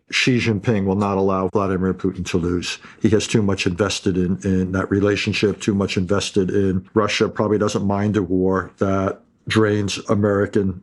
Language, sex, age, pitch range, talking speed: English, male, 50-69, 100-115 Hz, 170 wpm